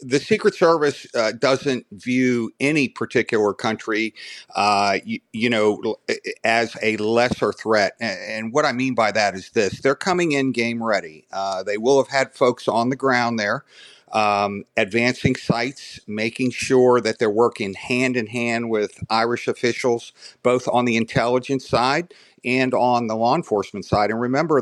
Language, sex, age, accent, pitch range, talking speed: English, male, 50-69, American, 110-130 Hz, 160 wpm